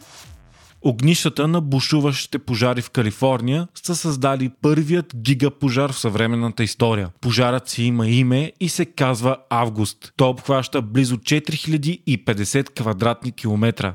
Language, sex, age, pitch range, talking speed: Bulgarian, male, 30-49, 120-145 Hz, 115 wpm